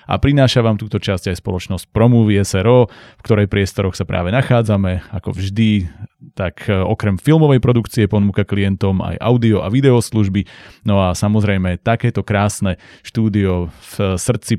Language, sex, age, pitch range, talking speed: Slovak, male, 30-49, 95-110 Hz, 145 wpm